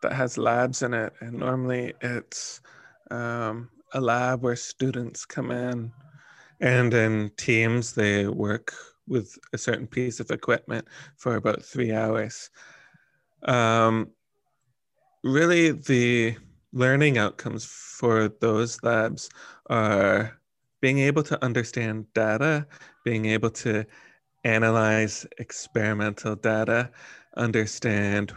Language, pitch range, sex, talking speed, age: English, 105-125 Hz, male, 110 wpm, 30-49